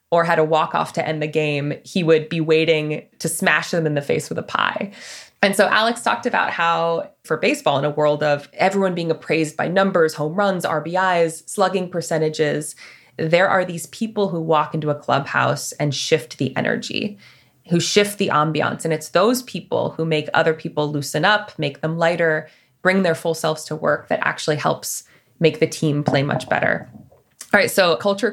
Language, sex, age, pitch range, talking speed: English, female, 20-39, 150-190 Hz, 195 wpm